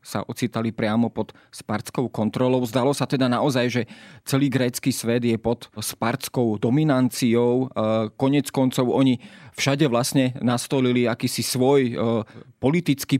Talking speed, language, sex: 125 wpm, Slovak, male